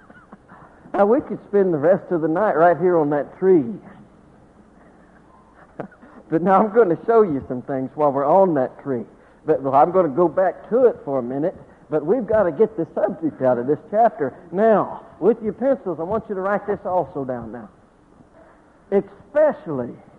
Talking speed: 190 wpm